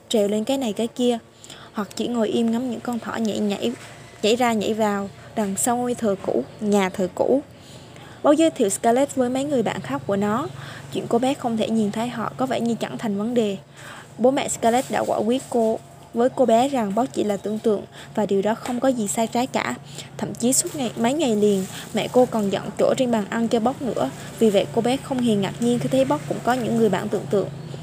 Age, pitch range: 20-39, 200-245 Hz